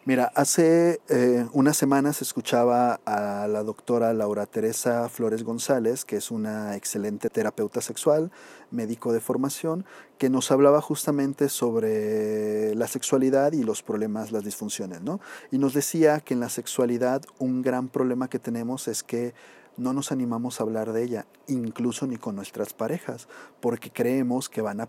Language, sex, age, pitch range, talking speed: Spanish, male, 40-59, 115-140 Hz, 160 wpm